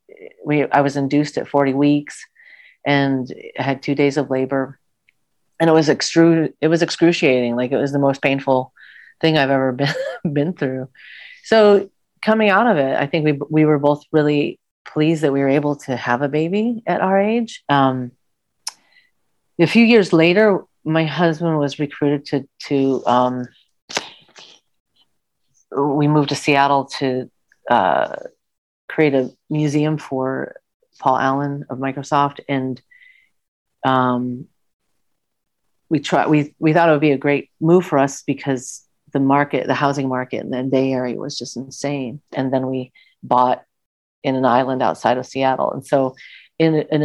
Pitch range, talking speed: 135-160 Hz, 160 wpm